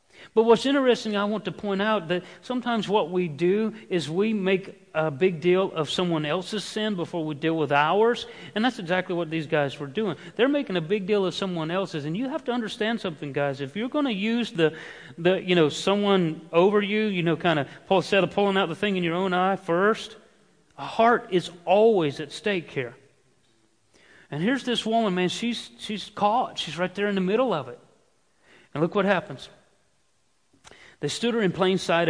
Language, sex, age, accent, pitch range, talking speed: English, male, 40-59, American, 150-200 Hz, 210 wpm